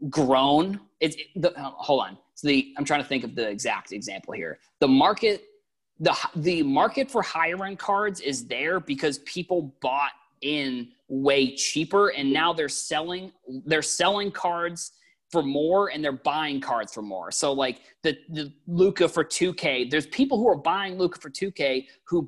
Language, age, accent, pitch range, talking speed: English, 30-49, American, 140-180 Hz, 175 wpm